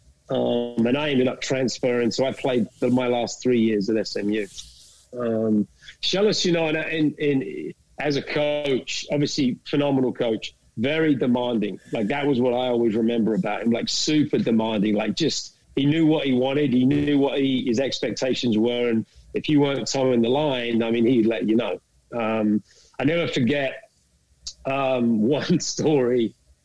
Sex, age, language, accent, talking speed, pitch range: male, 40-59, English, British, 175 wpm, 115-145 Hz